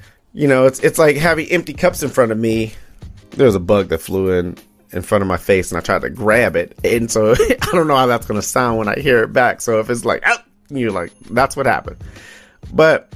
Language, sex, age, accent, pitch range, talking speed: English, male, 30-49, American, 115-145 Hz, 250 wpm